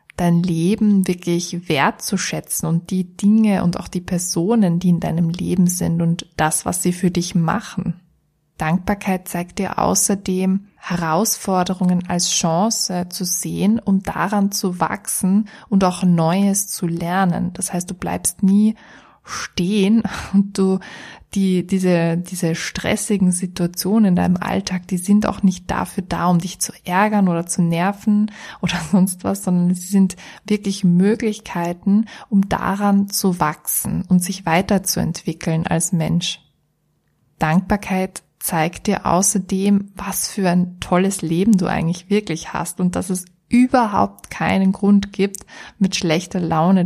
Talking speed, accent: 140 wpm, German